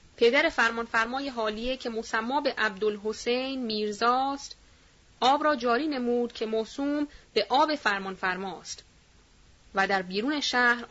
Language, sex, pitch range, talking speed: Persian, female, 210-270 Hz, 115 wpm